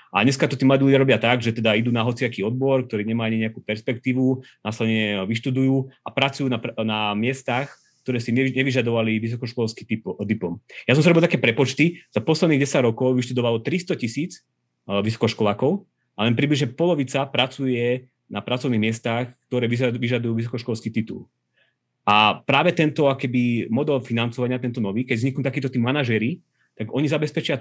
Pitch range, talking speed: 115-140 Hz, 155 wpm